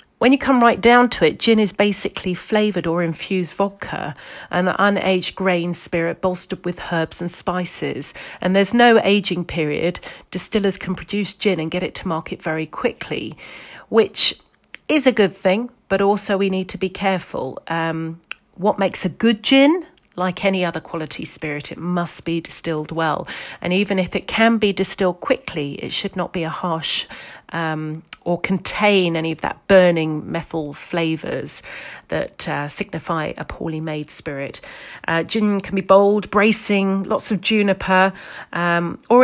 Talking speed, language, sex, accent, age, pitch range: 165 wpm, English, female, British, 40-59, 165-205 Hz